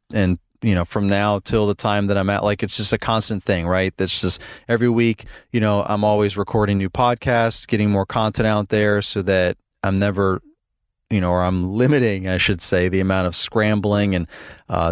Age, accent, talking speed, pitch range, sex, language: 30-49, American, 210 wpm, 100-115 Hz, male, English